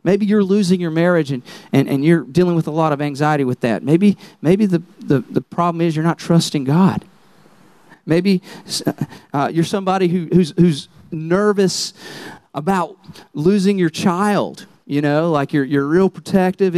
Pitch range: 165-215 Hz